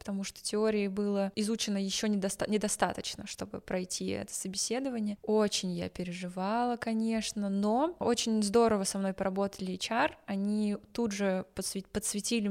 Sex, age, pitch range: female, 20-39, 190-220 Hz